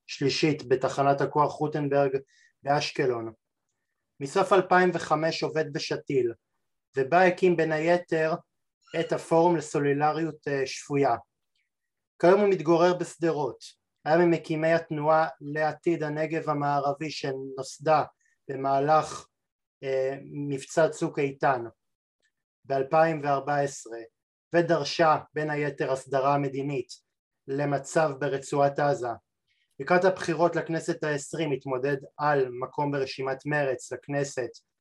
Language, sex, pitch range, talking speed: Hebrew, male, 135-165 Hz, 90 wpm